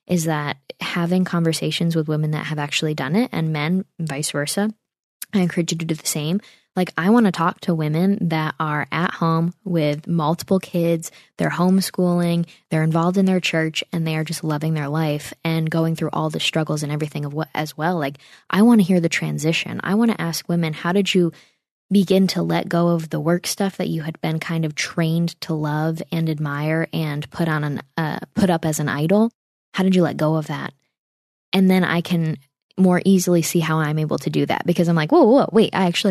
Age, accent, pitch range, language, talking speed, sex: 20-39, American, 160-190 Hz, English, 225 wpm, female